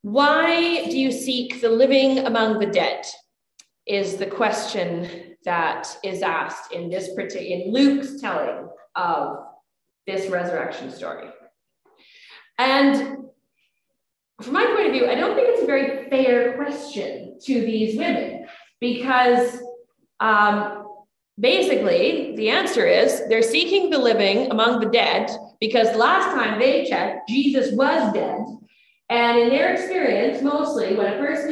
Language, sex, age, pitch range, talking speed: English, female, 30-49, 215-300 Hz, 135 wpm